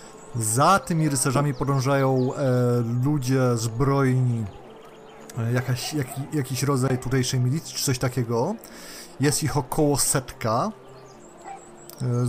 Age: 30-49